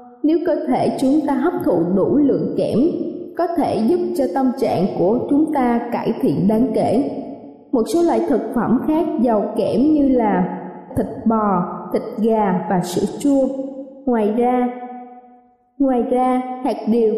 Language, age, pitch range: Vietnamese, 20-39, 225-270 Hz